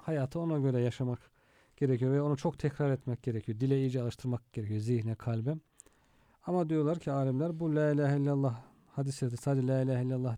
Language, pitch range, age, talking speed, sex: Turkish, 125-145 Hz, 40-59, 175 wpm, male